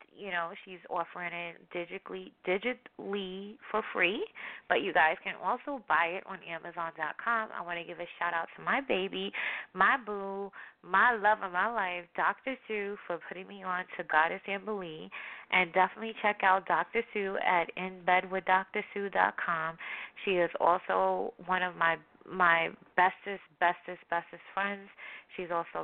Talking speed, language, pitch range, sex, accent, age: 155 wpm, English, 170-205 Hz, female, American, 20-39